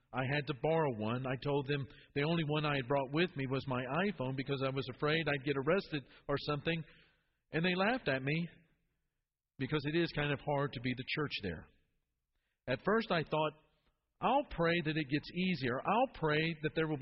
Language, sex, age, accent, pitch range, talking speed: English, male, 50-69, American, 125-160 Hz, 210 wpm